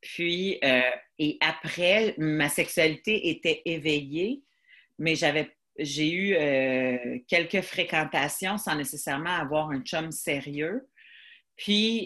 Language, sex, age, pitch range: French, female, 40-59, 145-185 Hz